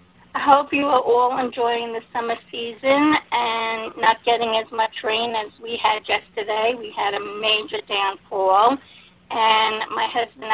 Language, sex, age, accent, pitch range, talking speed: English, female, 50-69, American, 215-245 Hz, 155 wpm